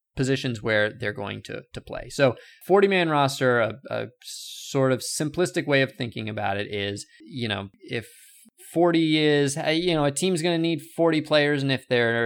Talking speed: 190 wpm